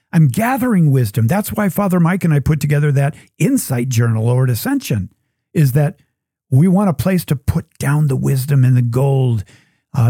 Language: English